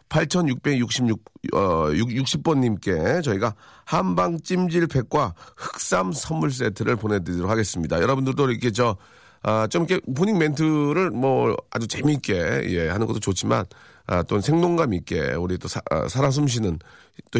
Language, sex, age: Korean, male, 40-59